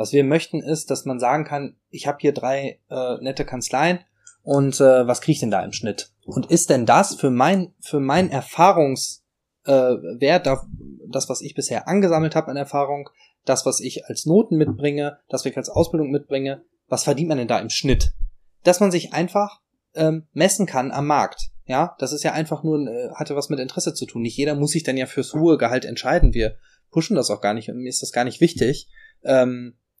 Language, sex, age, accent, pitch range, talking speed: German, male, 20-39, German, 125-155 Hz, 215 wpm